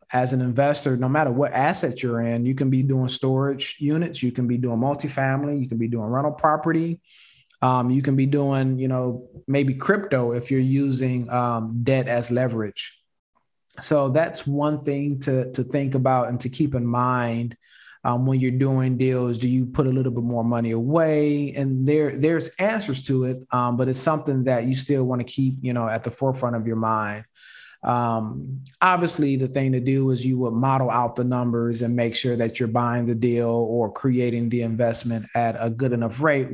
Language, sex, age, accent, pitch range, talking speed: English, male, 20-39, American, 120-140 Hz, 200 wpm